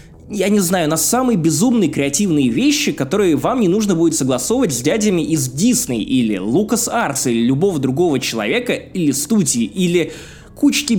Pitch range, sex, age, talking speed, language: 145-210 Hz, male, 20-39, 160 wpm, Russian